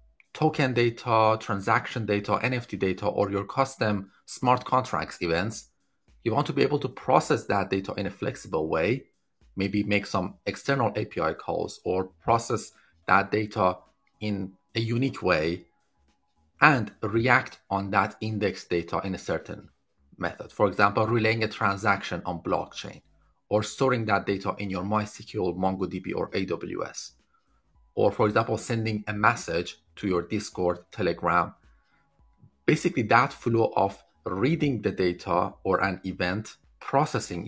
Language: English